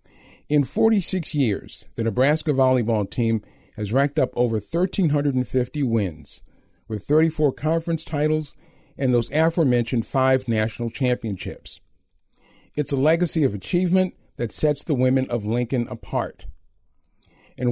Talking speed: 120 wpm